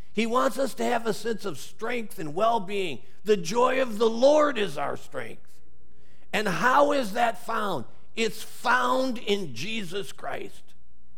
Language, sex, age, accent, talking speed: English, male, 50-69, American, 155 wpm